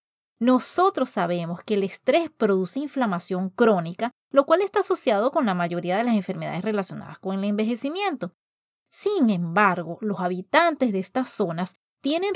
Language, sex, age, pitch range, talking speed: Spanish, female, 30-49, 190-275 Hz, 145 wpm